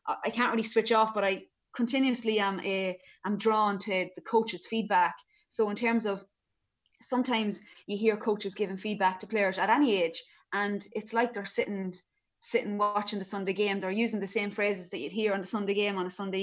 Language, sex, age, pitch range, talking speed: English, female, 20-39, 195-225 Hz, 200 wpm